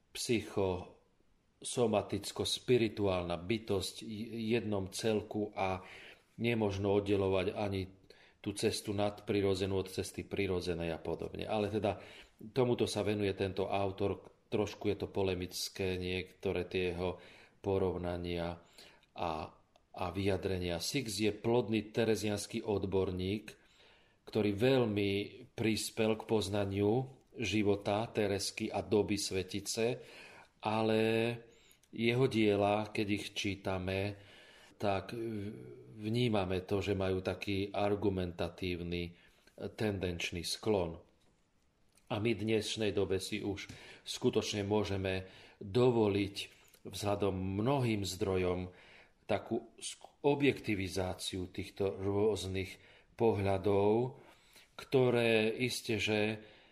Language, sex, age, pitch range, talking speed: Slovak, male, 40-59, 95-110 Hz, 90 wpm